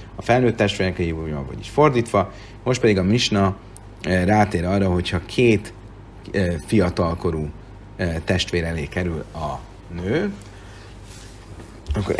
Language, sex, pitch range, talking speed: Hungarian, male, 90-105 Hz, 105 wpm